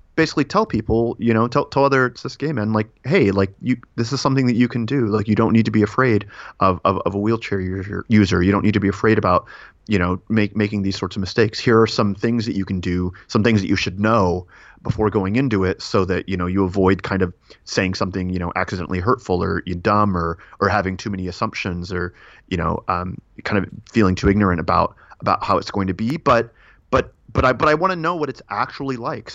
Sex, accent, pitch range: male, American, 95-115 Hz